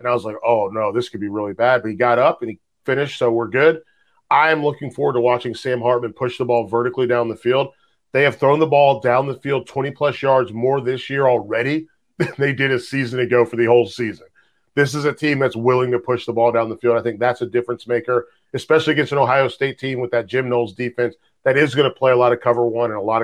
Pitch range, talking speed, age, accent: 120-145 Hz, 265 wpm, 40-59, American